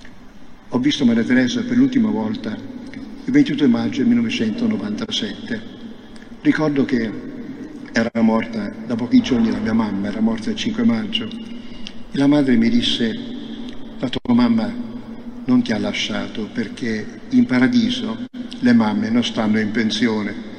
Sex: male